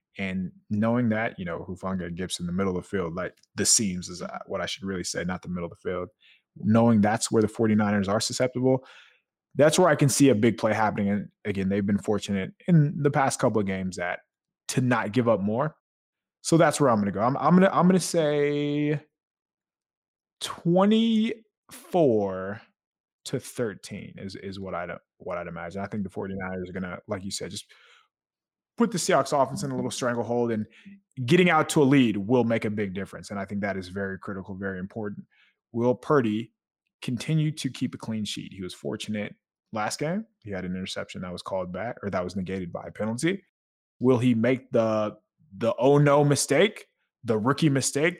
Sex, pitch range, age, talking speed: male, 100-145 Hz, 20-39, 205 wpm